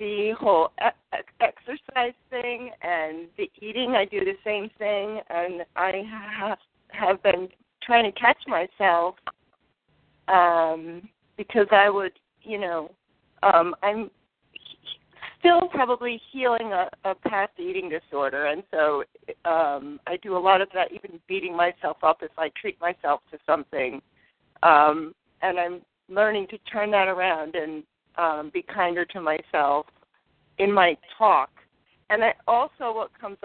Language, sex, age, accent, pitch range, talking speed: English, female, 40-59, American, 170-240 Hz, 140 wpm